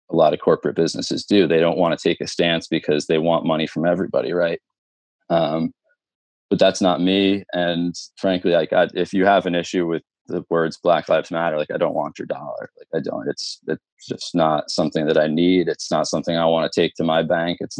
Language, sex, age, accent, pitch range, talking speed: English, male, 20-39, American, 85-95 Hz, 230 wpm